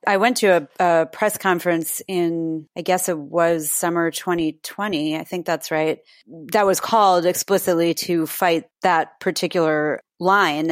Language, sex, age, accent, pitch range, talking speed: English, female, 30-49, American, 160-180 Hz, 150 wpm